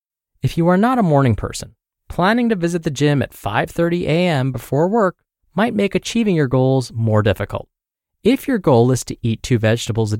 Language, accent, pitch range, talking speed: English, American, 115-170 Hz, 195 wpm